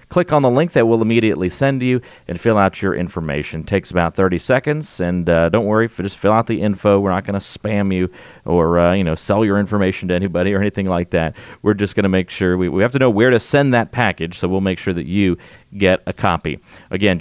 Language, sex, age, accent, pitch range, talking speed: English, male, 40-59, American, 90-115 Hz, 260 wpm